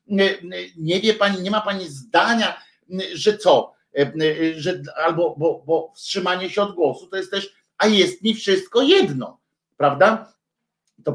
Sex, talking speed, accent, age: male, 145 wpm, native, 50-69